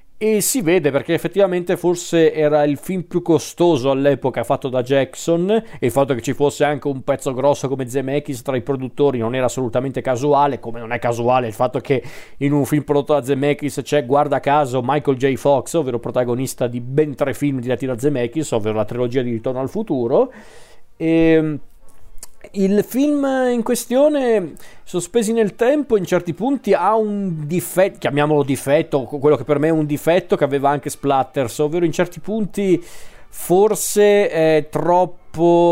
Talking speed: 175 wpm